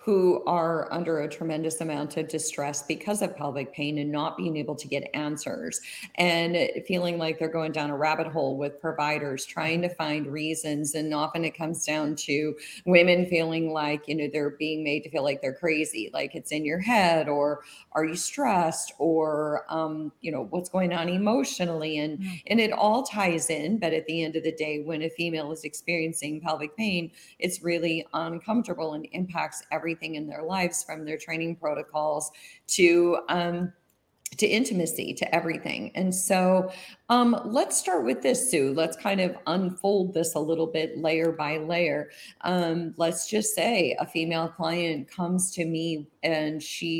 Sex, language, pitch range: female, English, 155-175 Hz